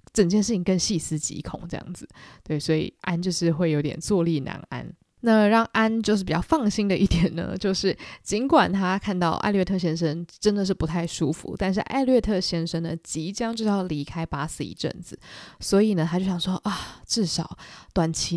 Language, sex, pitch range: Chinese, female, 165-205 Hz